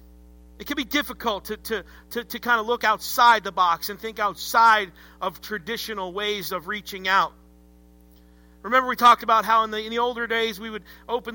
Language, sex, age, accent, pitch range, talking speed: English, male, 50-69, American, 155-230 Hz, 195 wpm